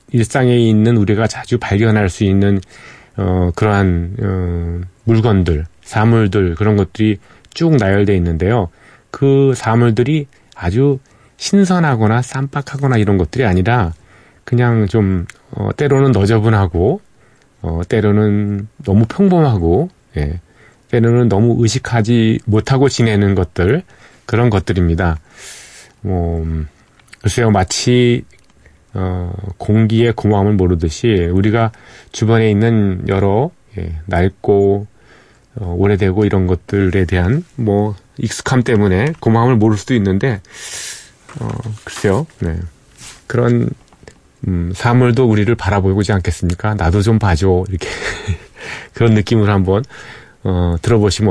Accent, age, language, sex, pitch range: native, 40-59, Korean, male, 95-120 Hz